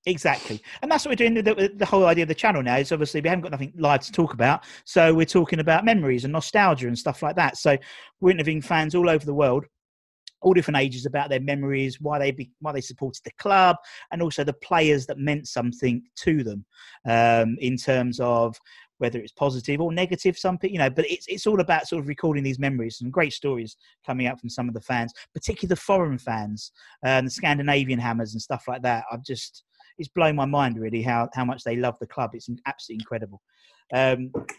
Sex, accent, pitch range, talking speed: male, British, 125-170 Hz, 220 wpm